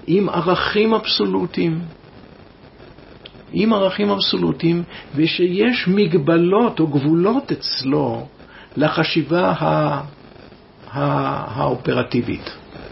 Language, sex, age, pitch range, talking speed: Hebrew, male, 60-79, 140-180 Hz, 60 wpm